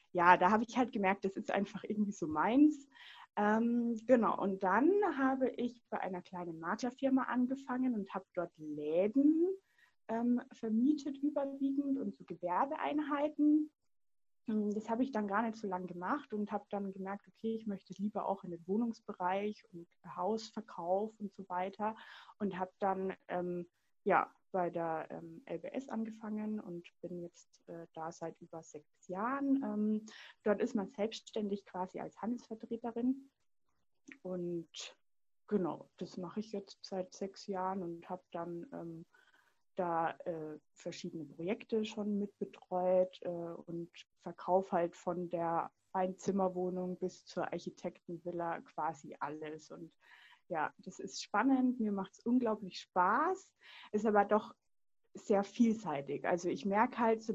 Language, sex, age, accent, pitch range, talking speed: German, female, 20-39, German, 180-230 Hz, 145 wpm